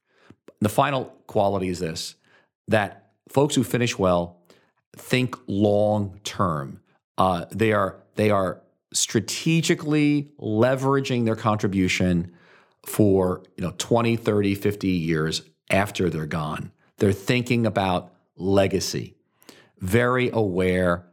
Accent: American